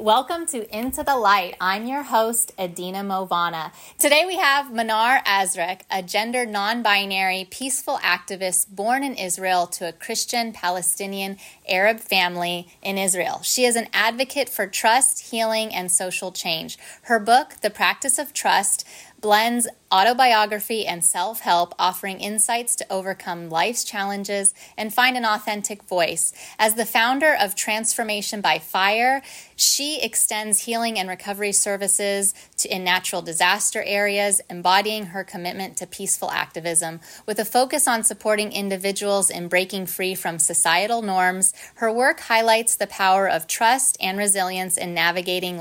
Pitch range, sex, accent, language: 185-230 Hz, female, American, English